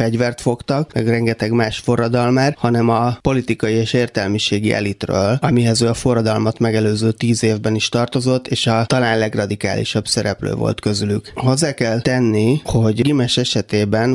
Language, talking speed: Hungarian, 145 wpm